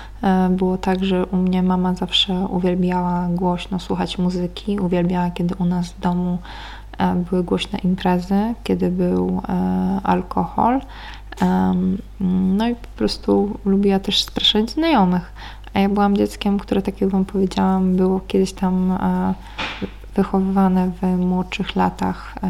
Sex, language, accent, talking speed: female, Polish, native, 125 wpm